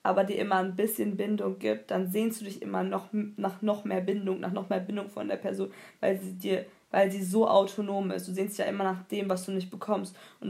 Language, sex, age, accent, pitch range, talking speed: German, female, 20-39, German, 190-225 Hz, 250 wpm